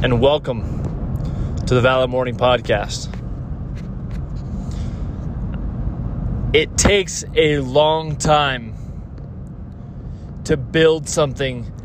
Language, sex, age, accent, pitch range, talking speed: English, male, 20-39, American, 120-150 Hz, 75 wpm